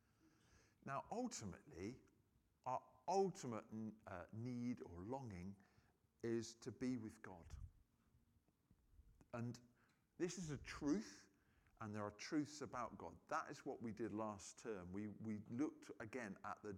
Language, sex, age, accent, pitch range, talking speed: English, male, 50-69, British, 110-160 Hz, 135 wpm